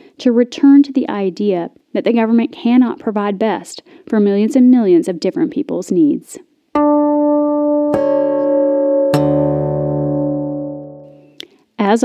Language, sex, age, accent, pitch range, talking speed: English, female, 30-49, American, 185-265 Hz, 100 wpm